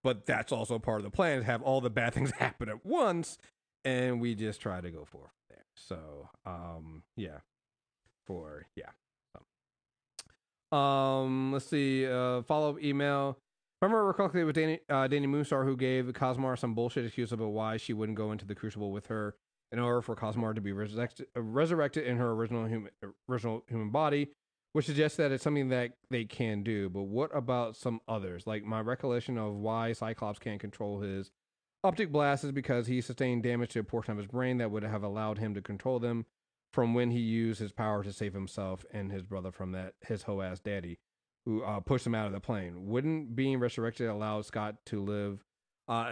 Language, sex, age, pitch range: English, male, 30-49, 105-130 Hz